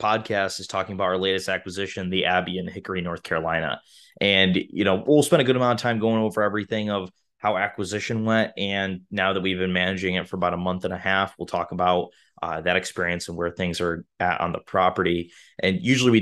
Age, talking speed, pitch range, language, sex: 20-39, 225 wpm, 90-105 Hz, English, male